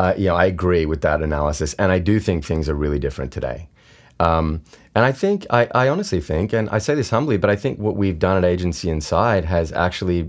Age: 20-39